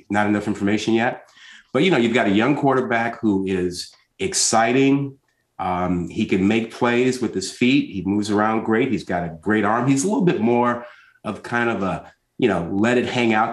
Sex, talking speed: male, 210 wpm